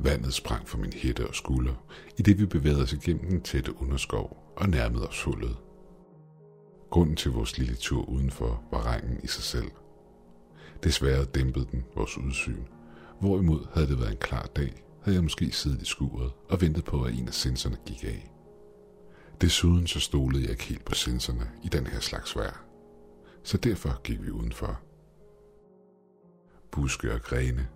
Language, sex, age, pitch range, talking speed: Danish, male, 60-79, 65-90 Hz, 170 wpm